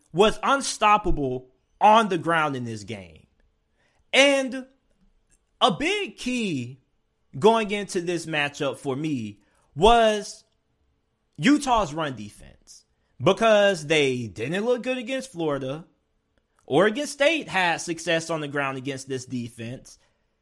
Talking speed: 115 wpm